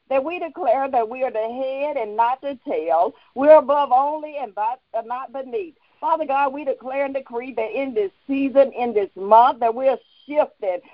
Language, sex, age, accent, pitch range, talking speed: English, female, 50-69, American, 235-305 Hz, 190 wpm